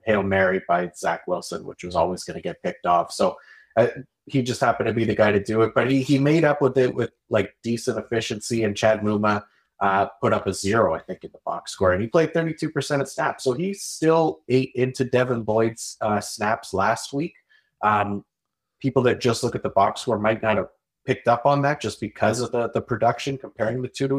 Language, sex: English, male